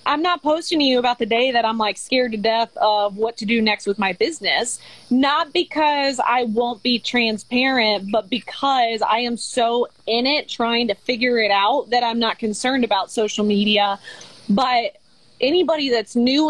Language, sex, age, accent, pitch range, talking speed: English, female, 20-39, American, 225-265 Hz, 185 wpm